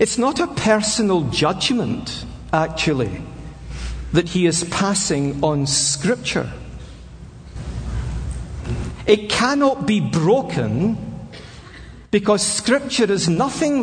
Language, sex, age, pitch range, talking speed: English, male, 50-69, 150-215 Hz, 85 wpm